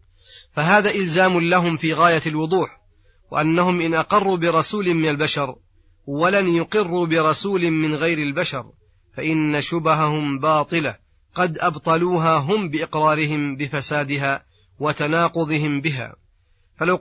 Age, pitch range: 30-49, 145-165 Hz